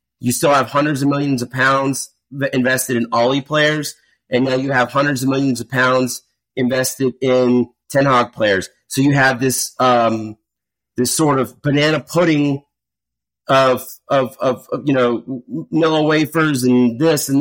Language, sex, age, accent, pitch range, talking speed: English, male, 30-49, American, 125-170 Hz, 160 wpm